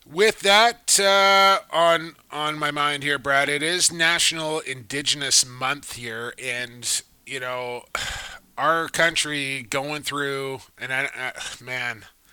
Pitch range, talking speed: 125-160 Hz, 125 wpm